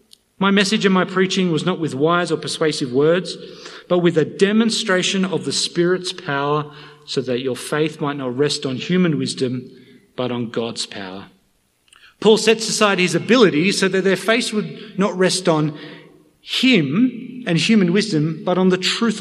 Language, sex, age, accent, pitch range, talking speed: English, male, 40-59, Australian, 155-215 Hz, 170 wpm